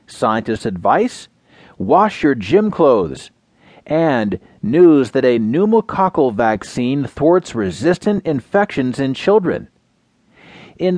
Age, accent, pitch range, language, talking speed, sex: 40-59, American, 125-200 Hz, English, 100 wpm, male